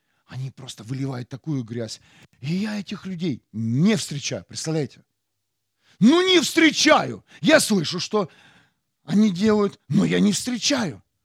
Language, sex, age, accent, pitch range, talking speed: Russian, male, 40-59, native, 110-170 Hz, 130 wpm